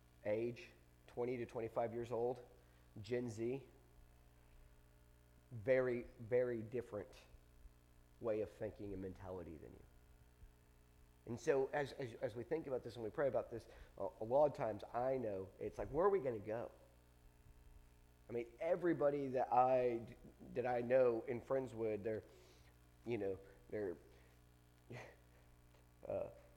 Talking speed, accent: 140 wpm, American